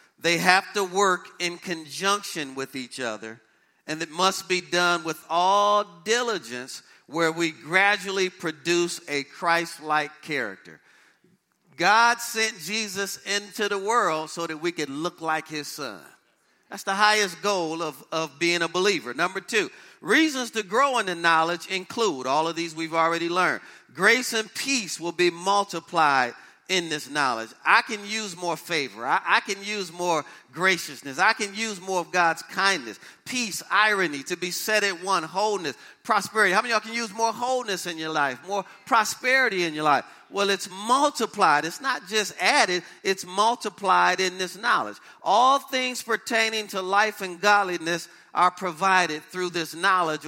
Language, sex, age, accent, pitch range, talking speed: English, male, 40-59, American, 170-215 Hz, 165 wpm